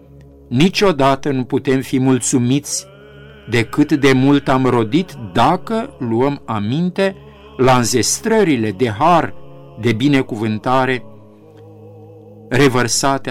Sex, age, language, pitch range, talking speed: male, 50-69, Romanian, 115-155 Hz, 90 wpm